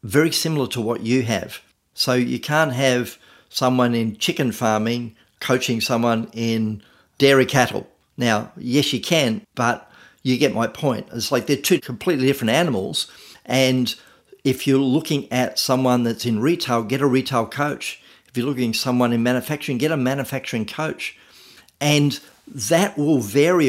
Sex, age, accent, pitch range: male, 50-69, Australian, 115-140 Hz